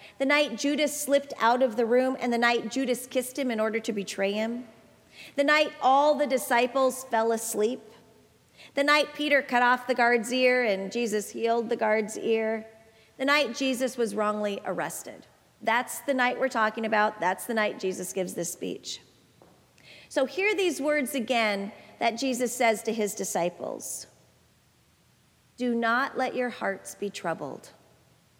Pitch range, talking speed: 215-265 Hz, 165 wpm